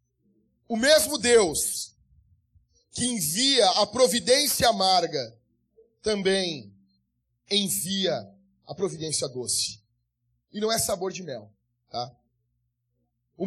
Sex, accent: male, Brazilian